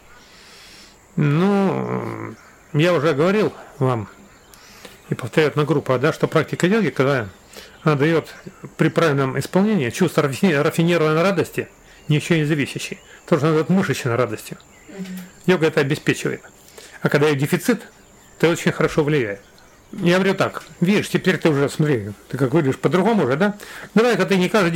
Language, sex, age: Russian, male, 40-59